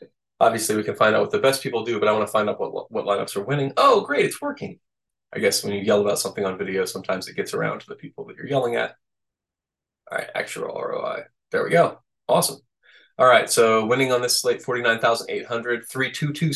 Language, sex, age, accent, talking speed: English, male, 20-39, American, 225 wpm